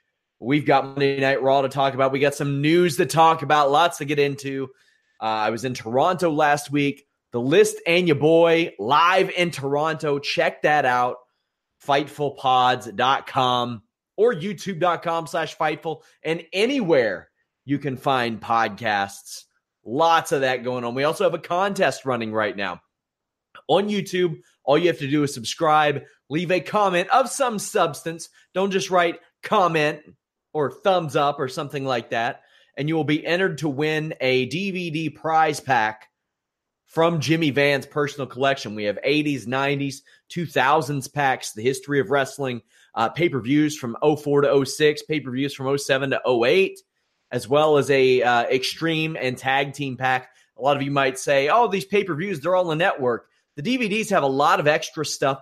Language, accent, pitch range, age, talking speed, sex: English, American, 135-165 Hz, 30-49, 170 wpm, male